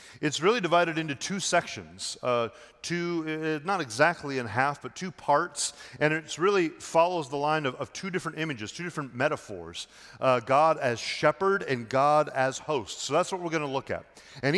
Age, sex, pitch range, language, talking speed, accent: 40-59, male, 135-165 Hz, English, 195 wpm, American